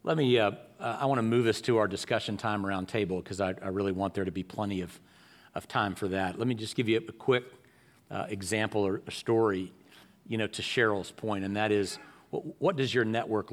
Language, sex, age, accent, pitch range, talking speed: English, male, 40-59, American, 105-120 Hz, 245 wpm